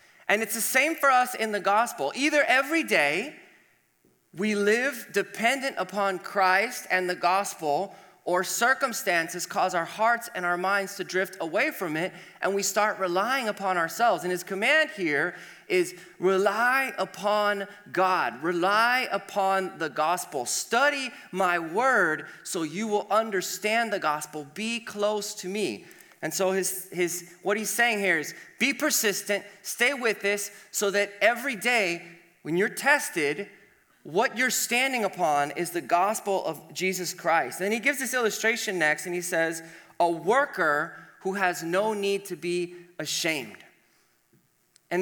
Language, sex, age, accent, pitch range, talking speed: English, male, 20-39, American, 175-225 Hz, 155 wpm